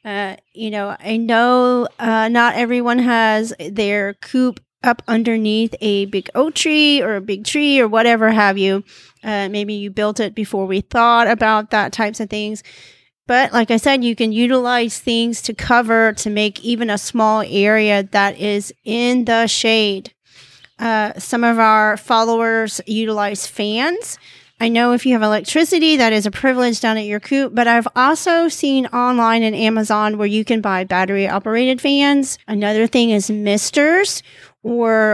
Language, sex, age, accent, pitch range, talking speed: English, female, 30-49, American, 210-245 Hz, 170 wpm